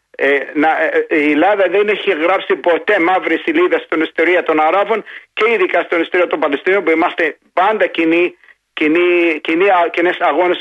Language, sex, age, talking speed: Greek, male, 50-69, 155 wpm